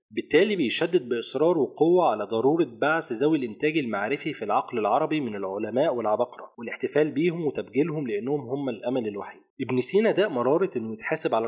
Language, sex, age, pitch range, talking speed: Arabic, male, 20-39, 115-175 Hz, 155 wpm